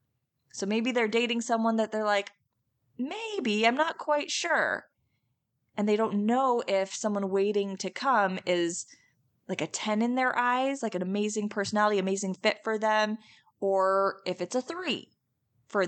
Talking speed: 165 wpm